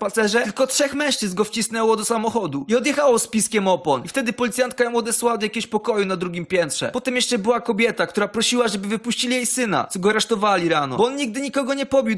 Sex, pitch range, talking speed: male, 205-245 Hz, 215 wpm